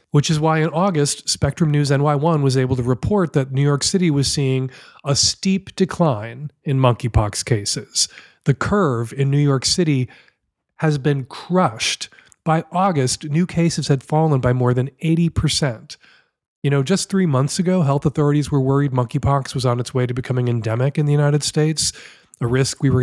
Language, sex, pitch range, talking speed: English, male, 125-155 Hz, 180 wpm